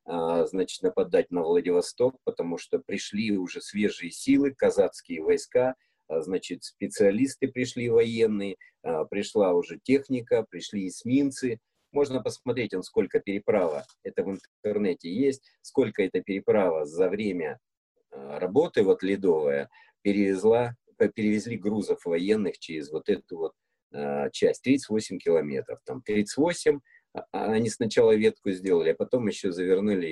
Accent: native